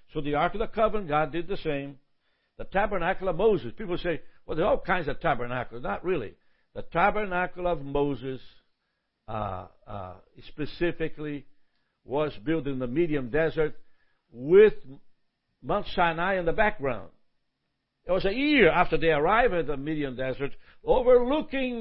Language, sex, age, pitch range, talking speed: English, male, 60-79, 135-180 Hz, 155 wpm